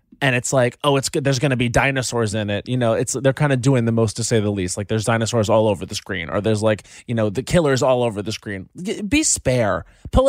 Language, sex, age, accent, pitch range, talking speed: English, male, 20-39, American, 100-135 Hz, 275 wpm